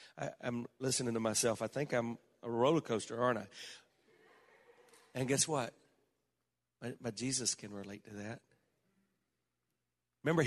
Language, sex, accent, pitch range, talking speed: English, male, American, 115-135 Hz, 150 wpm